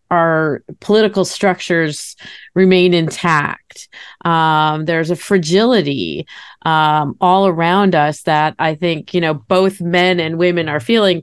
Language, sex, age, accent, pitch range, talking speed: English, female, 30-49, American, 155-180 Hz, 130 wpm